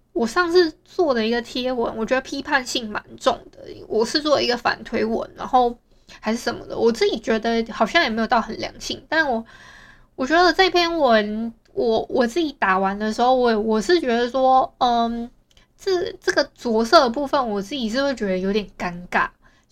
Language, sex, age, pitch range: Chinese, female, 20-39, 215-270 Hz